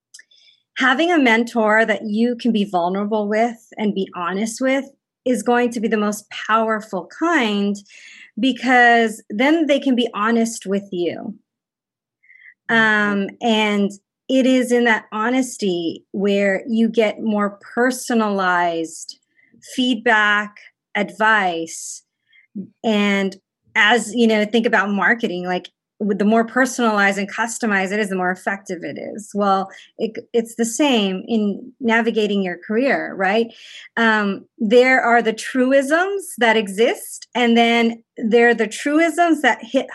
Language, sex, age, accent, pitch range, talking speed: English, female, 30-49, American, 205-245 Hz, 135 wpm